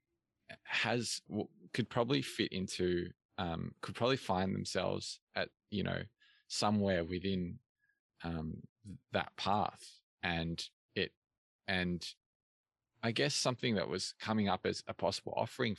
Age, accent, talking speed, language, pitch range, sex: 20-39, Australian, 120 wpm, English, 90-115 Hz, male